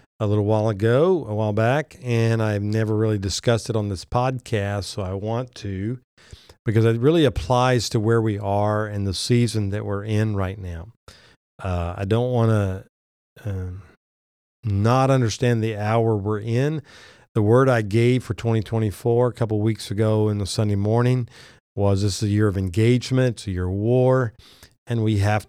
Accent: American